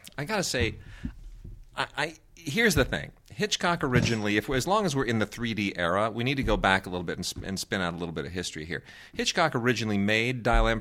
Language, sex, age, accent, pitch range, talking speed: English, male, 40-59, American, 95-125 Hz, 240 wpm